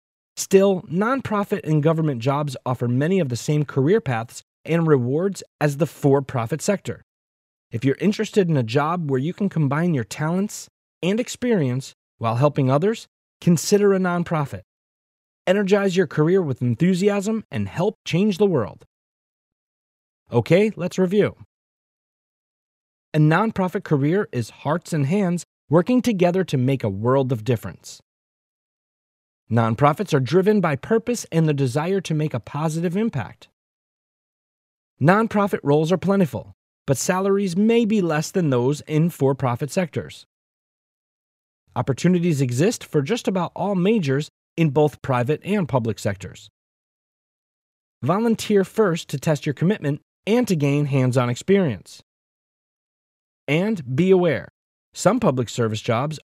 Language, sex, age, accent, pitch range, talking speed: English, male, 30-49, American, 135-195 Hz, 135 wpm